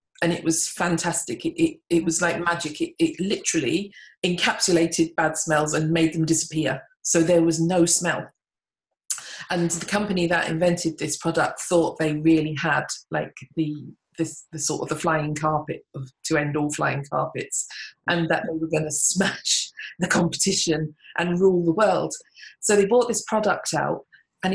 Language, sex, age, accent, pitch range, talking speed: English, female, 40-59, British, 160-185 Hz, 175 wpm